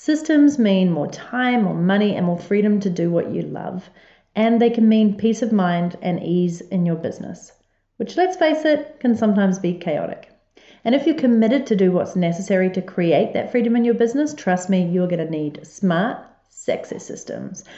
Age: 40-59